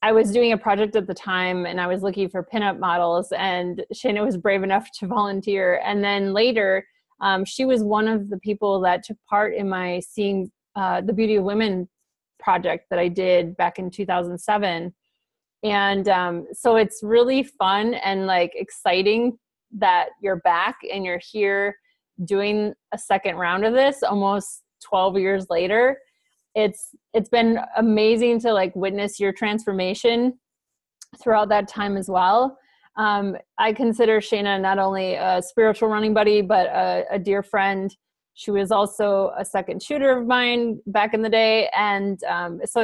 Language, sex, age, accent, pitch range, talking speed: English, female, 30-49, American, 190-220 Hz, 165 wpm